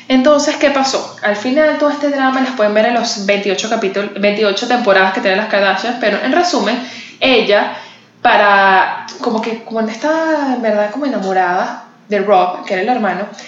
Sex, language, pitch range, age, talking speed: female, English, 195-255 Hz, 10-29, 175 wpm